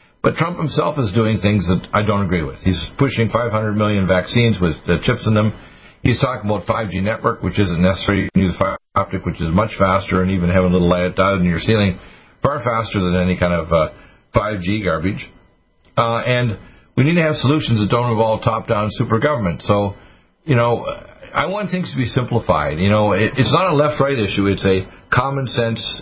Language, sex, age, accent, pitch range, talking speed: English, male, 50-69, American, 95-125 Hz, 210 wpm